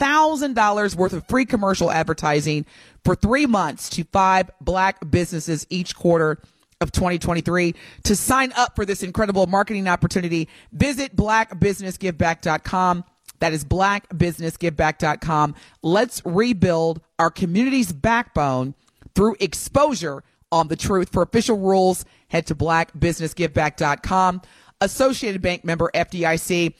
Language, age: English, 30-49